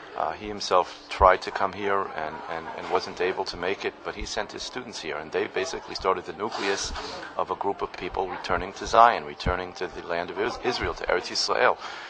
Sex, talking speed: male, 220 wpm